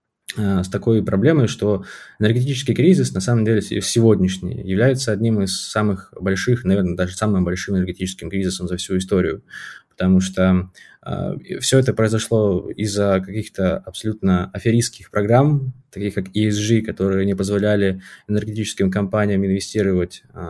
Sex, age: male, 20-39